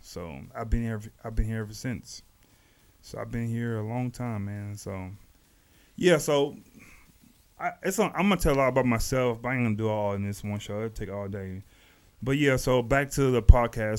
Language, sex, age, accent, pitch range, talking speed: English, male, 30-49, American, 105-125 Hz, 220 wpm